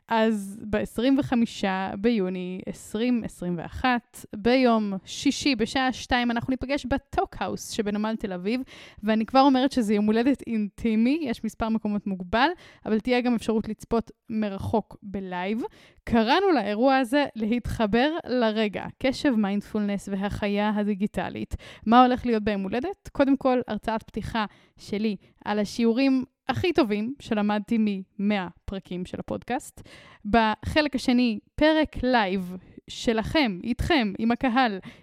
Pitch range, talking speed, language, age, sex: 210-260 Hz, 115 wpm, Hebrew, 10-29, female